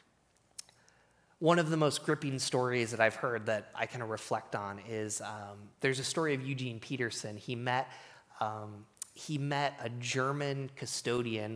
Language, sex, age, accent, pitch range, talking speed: English, male, 30-49, American, 120-155 Hz, 160 wpm